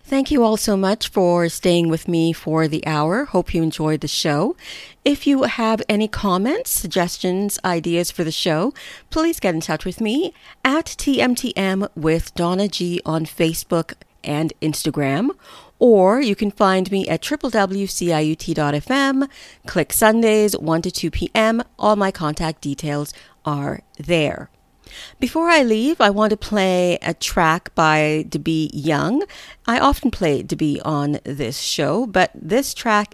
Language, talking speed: English, 150 wpm